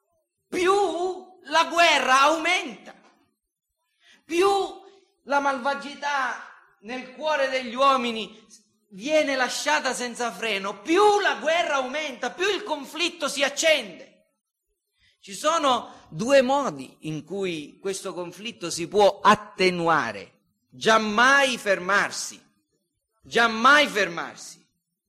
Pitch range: 205-310 Hz